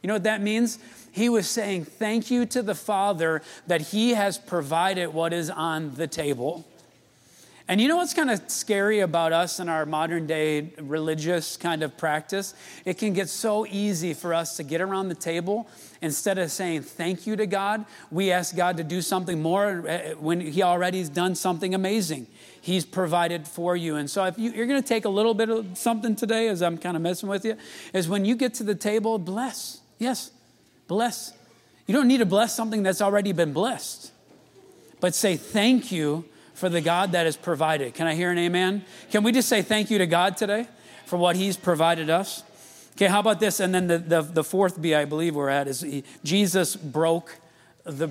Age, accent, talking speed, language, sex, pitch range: 30-49, American, 205 wpm, English, male, 165-210 Hz